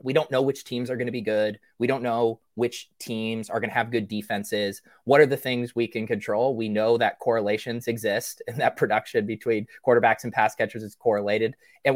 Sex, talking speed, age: male, 220 wpm, 20-39